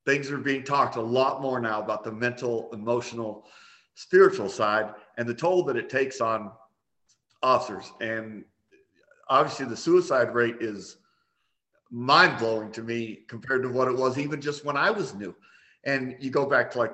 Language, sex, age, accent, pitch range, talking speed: English, male, 50-69, American, 115-135 Hz, 175 wpm